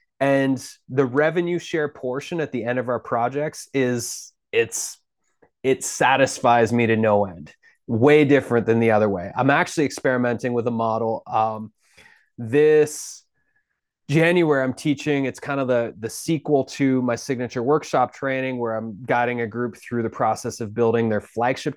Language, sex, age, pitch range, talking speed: English, male, 20-39, 115-145 Hz, 165 wpm